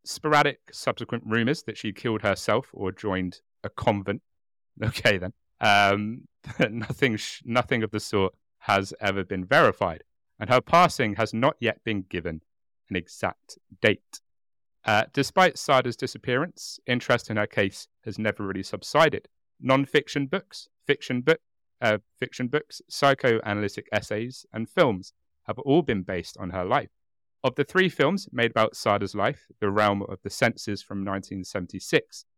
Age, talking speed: 30-49, 150 wpm